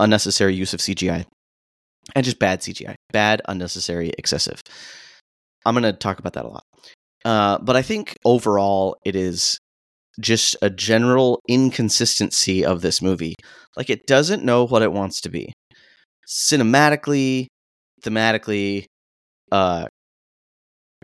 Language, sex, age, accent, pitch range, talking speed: English, male, 30-49, American, 95-120 Hz, 130 wpm